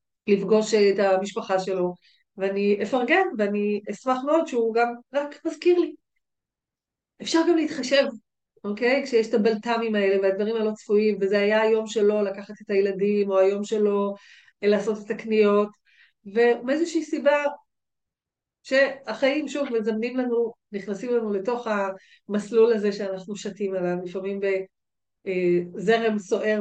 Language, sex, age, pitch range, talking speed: Hebrew, female, 40-59, 195-255 Hz, 125 wpm